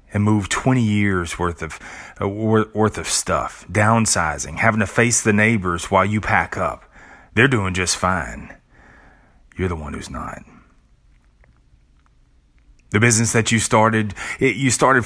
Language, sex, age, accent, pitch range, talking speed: English, male, 30-49, American, 90-115 Hz, 145 wpm